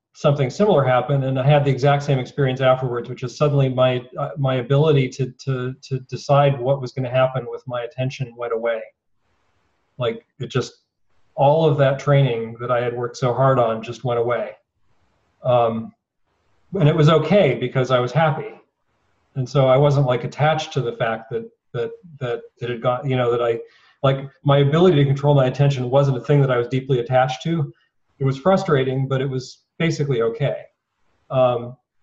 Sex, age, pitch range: male, 40-59, 125-145 Hz